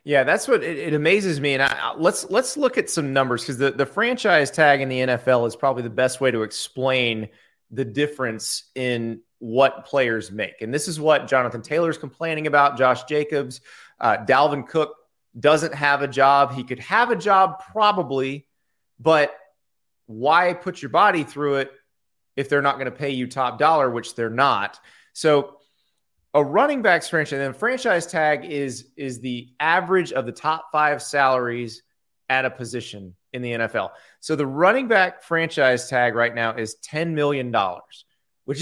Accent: American